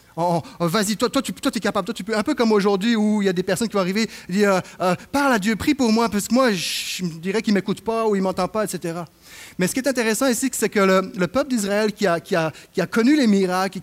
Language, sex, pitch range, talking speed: French, male, 135-205 Hz, 305 wpm